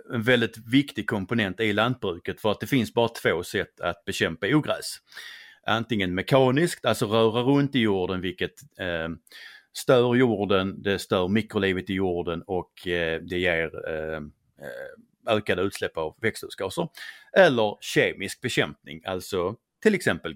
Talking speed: 130 wpm